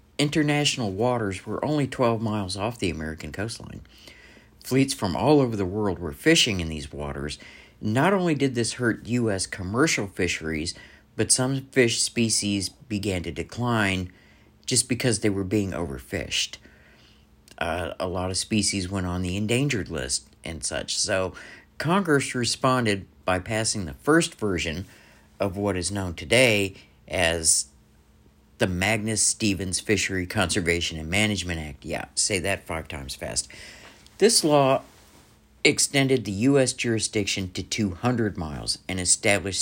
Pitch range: 85-115 Hz